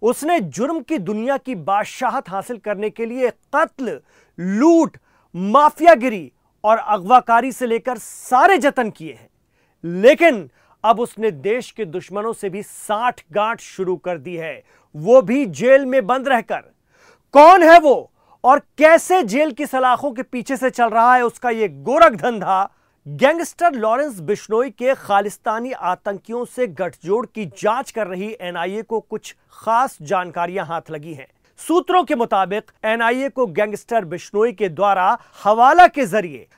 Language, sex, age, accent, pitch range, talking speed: Hindi, male, 40-59, native, 205-265 Hz, 150 wpm